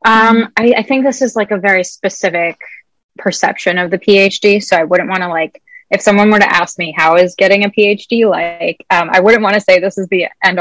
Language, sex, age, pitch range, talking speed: English, female, 20-39, 180-210 Hz, 240 wpm